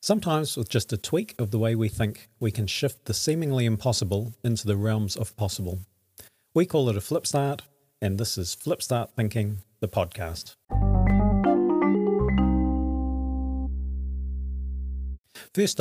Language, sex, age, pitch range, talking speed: English, male, 40-59, 100-120 Hz, 135 wpm